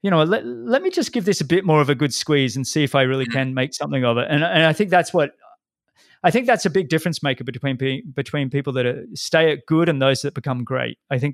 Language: English